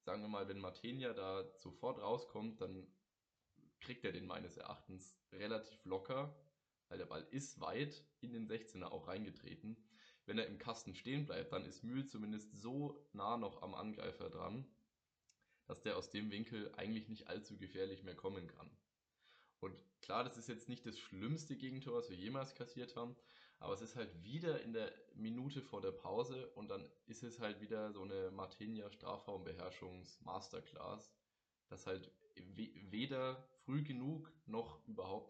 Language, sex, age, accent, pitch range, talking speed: German, male, 20-39, German, 95-125 Hz, 160 wpm